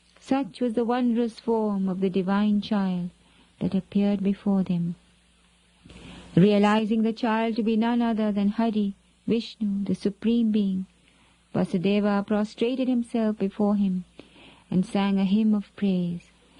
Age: 50-69